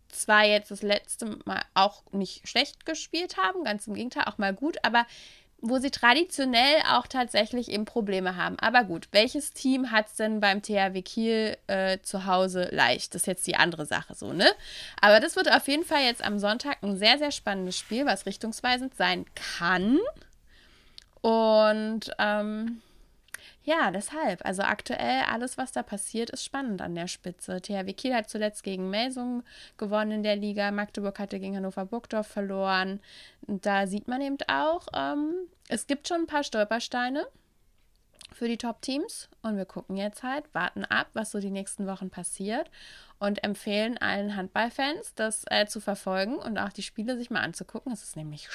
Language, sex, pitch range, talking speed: German, female, 195-255 Hz, 175 wpm